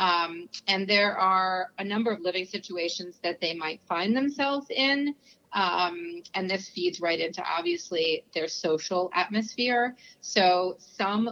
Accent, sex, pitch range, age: American, female, 170-220 Hz, 30-49